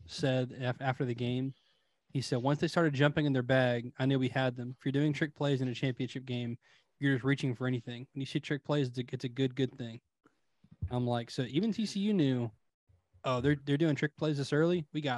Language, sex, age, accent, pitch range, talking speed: English, male, 20-39, American, 130-155 Hz, 230 wpm